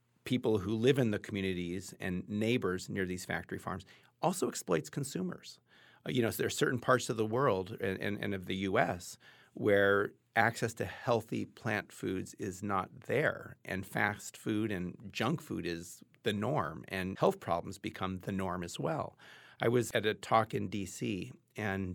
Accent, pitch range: American, 95-115 Hz